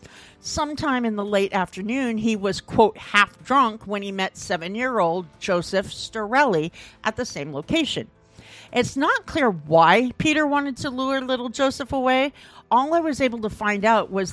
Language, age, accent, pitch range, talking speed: English, 50-69, American, 185-250 Hz, 170 wpm